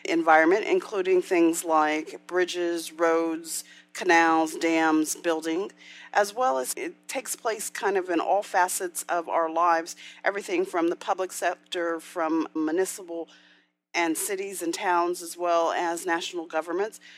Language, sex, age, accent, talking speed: English, female, 40-59, American, 135 wpm